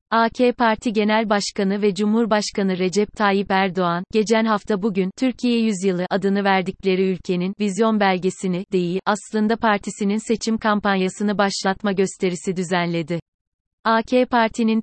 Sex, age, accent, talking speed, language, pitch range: female, 30-49, native, 115 wpm, Turkish, 190-215 Hz